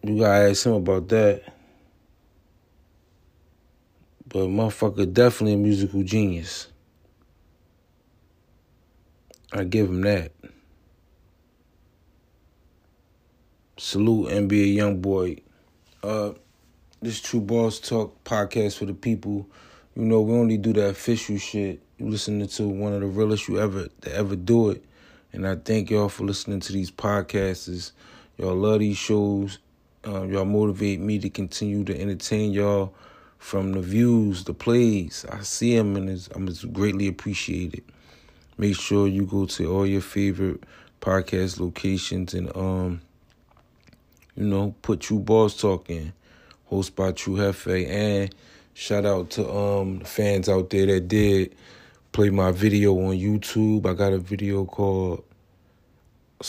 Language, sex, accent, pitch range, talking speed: English, male, American, 95-105 Hz, 140 wpm